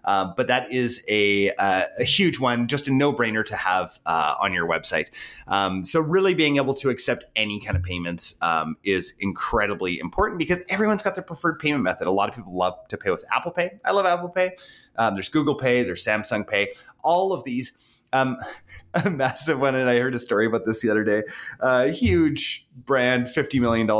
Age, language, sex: 30-49, English, male